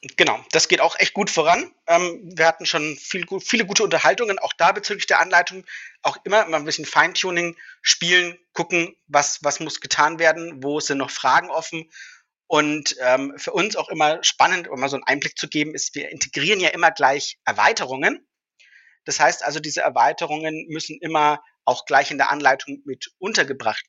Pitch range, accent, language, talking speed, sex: 140-175 Hz, German, German, 180 wpm, male